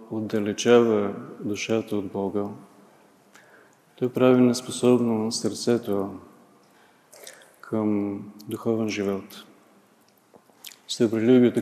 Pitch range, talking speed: 105-120 Hz, 65 wpm